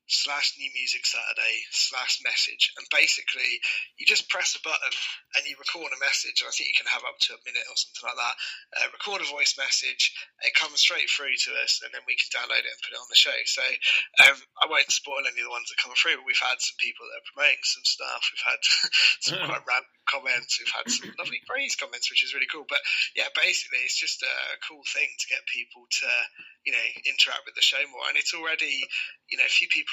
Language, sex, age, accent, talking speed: English, male, 20-39, British, 240 wpm